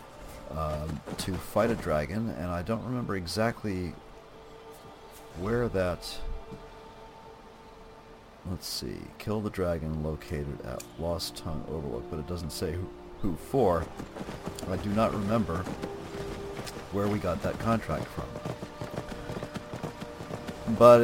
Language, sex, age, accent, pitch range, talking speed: English, male, 40-59, American, 80-105 Hz, 115 wpm